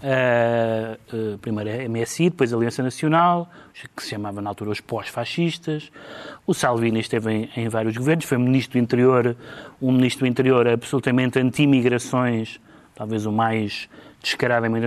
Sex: male